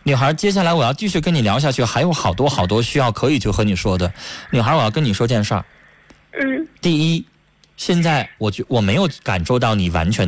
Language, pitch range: Chinese, 100-155 Hz